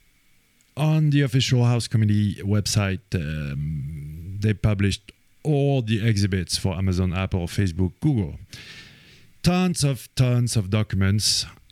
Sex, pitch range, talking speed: male, 95-125 Hz, 115 wpm